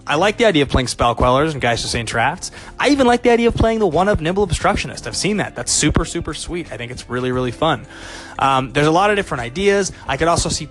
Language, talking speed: English, 270 wpm